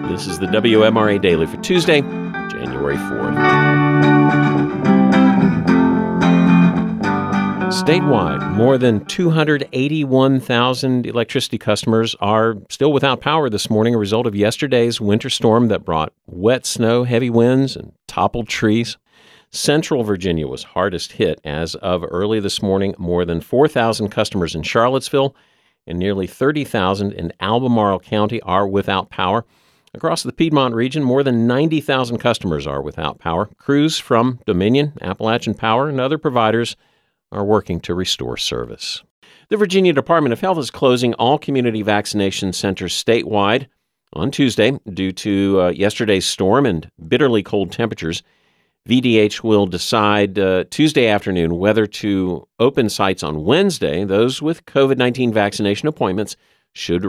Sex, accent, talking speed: male, American, 130 wpm